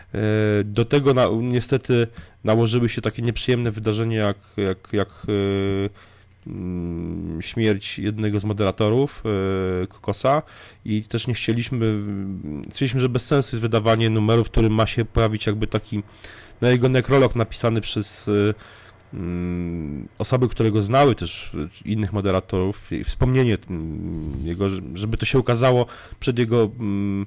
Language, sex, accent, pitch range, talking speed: Polish, male, native, 100-125 Hz, 120 wpm